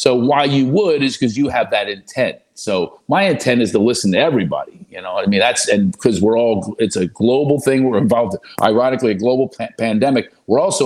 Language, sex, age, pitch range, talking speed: English, male, 50-69, 115-165 Hz, 220 wpm